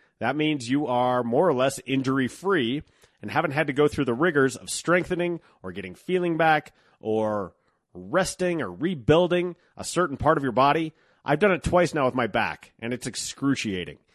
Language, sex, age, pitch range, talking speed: English, male, 30-49, 110-145 Hz, 180 wpm